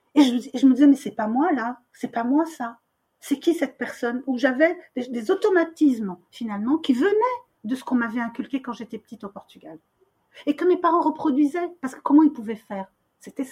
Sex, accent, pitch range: female, French, 230-310 Hz